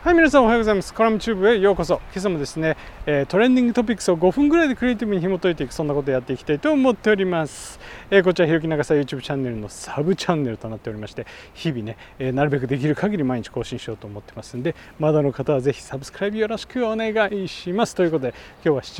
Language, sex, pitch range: Japanese, male, 130-200 Hz